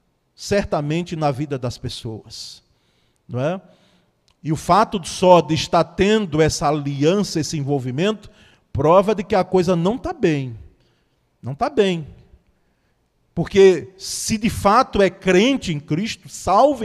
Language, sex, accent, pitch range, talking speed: Portuguese, male, Brazilian, 145-210 Hz, 140 wpm